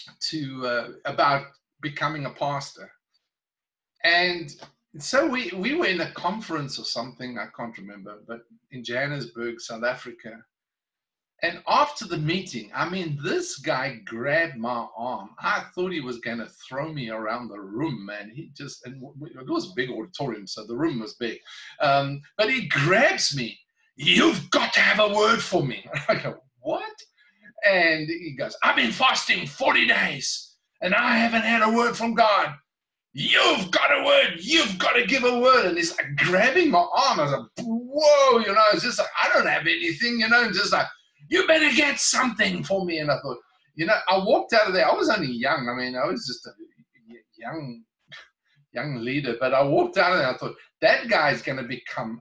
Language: English